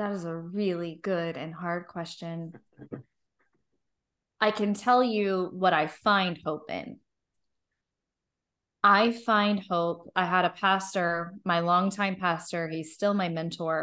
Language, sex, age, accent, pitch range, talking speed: English, female, 20-39, American, 165-195 Hz, 135 wpm